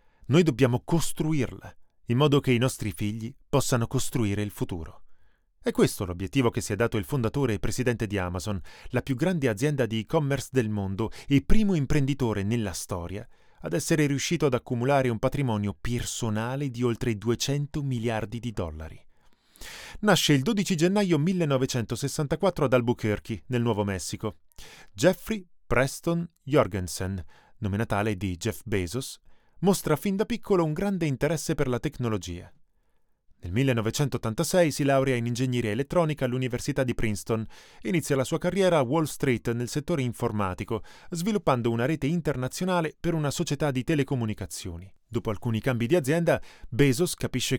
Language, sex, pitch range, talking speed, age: Italian, male, 110-155 Hz, 150 wpm, 20-39